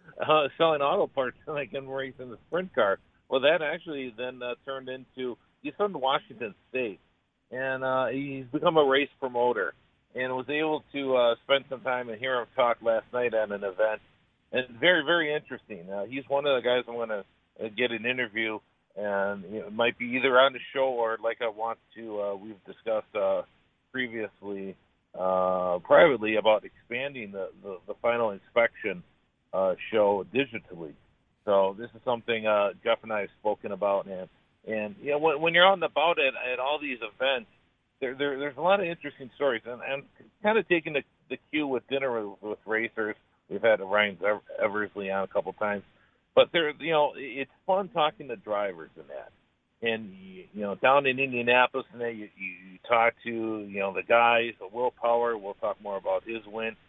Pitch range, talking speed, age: 110-135 Hz, 195 wpm, 50-69